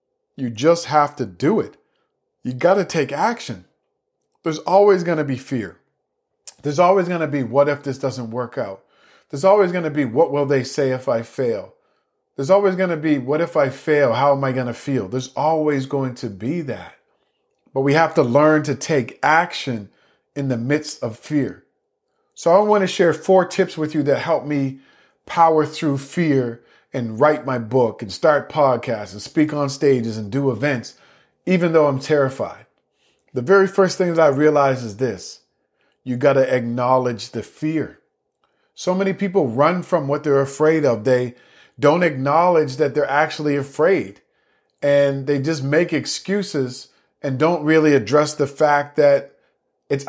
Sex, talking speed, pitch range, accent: male, 175 wpm, 130-165 Hz, American